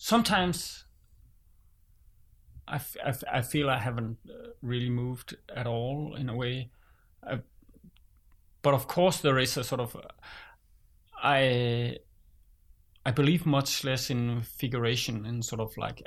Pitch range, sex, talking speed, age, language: 115-165 Hz, male, 140 wpm, 30-49, English